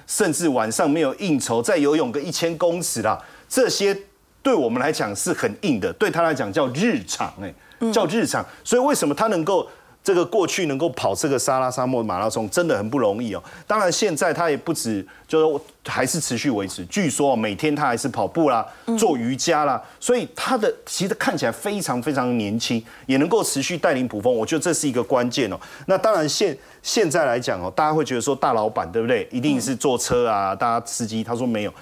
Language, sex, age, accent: Chinese, male, 30-49, native